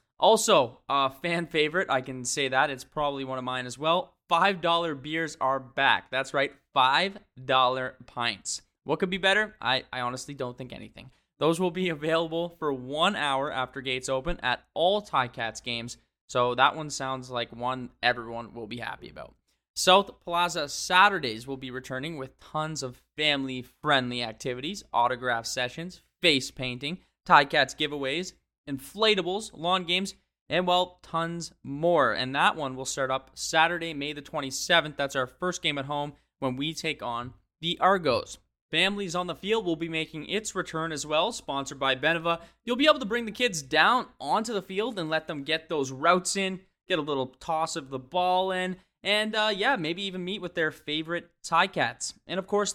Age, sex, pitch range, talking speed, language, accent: 20-39, male, 130-180 Hz, 180 wpm, English, American